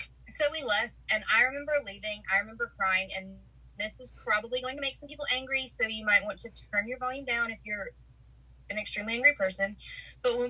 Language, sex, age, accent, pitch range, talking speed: English, female, 20-39, American, 195-245 Hz, 210 wpm